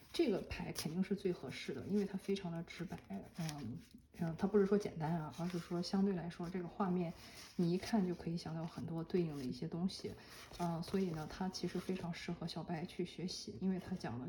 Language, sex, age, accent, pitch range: Chinese, female, 20-39, native, 165-190 Hz